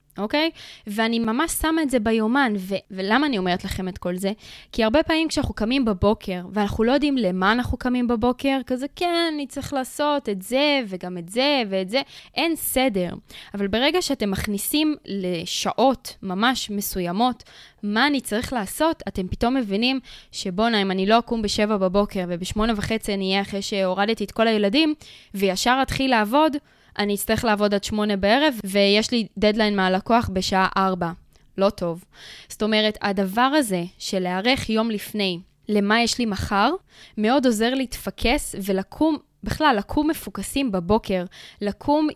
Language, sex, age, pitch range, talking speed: Hebrew, female, 20-39, 195-260 Hz, 155 wpm